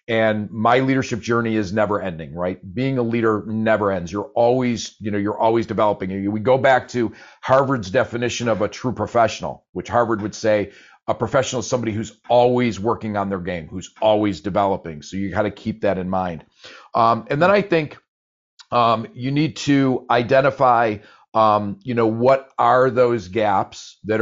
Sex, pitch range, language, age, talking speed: male, 105-130 Hz, English, 40-59, 180 wpm